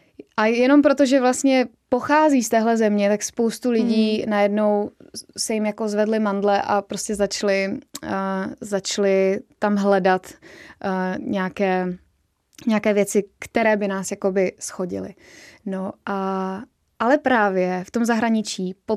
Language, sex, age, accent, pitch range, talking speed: Czech, female, 20-39, native, 190-220 Hz, 125 wpm